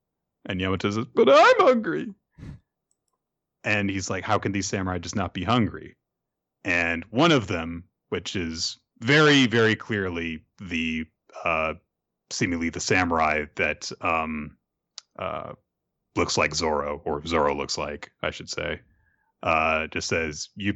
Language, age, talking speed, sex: English, 30-49, 140 wpm, male